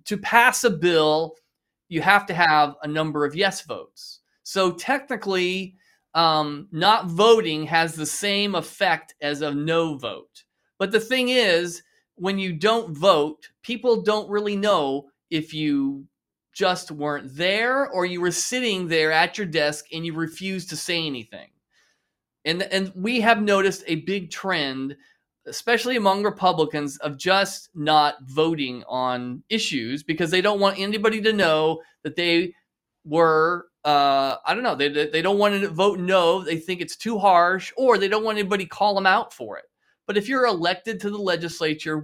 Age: 30-49